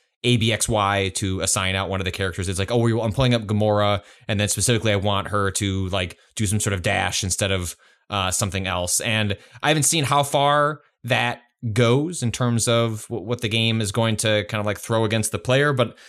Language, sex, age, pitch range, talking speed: English, male, 20-39, 100-120 Hz, 230 wpm